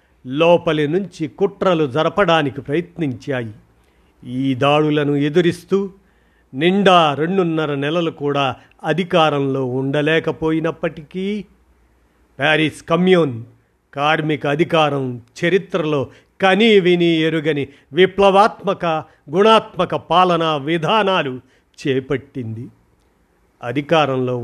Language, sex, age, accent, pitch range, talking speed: Telugu, male, 50-69, native, 135-175 Hz, 70 wpm